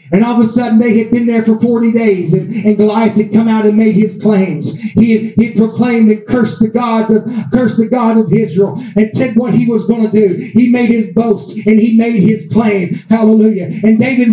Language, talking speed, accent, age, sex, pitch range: English, 220 wpm, American, 40-59, male, 220-260 Hz